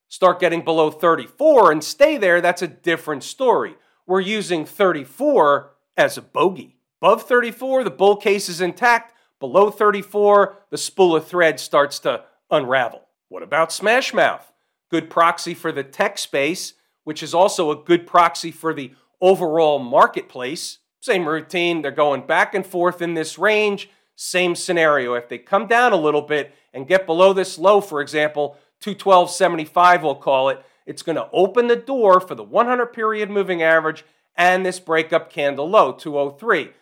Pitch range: 160-195 Hz